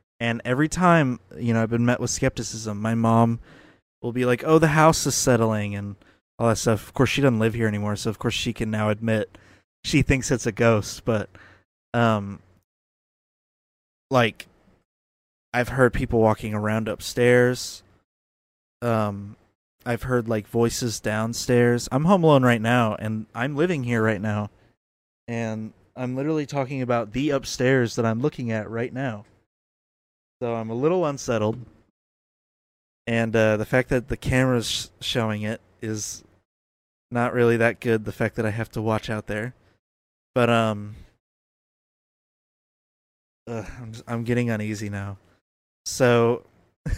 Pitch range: 105-125 Hz